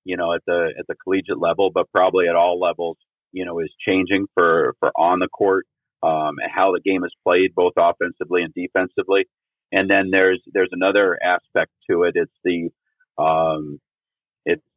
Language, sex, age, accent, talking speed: English, male, 40-59, American, 185 wpm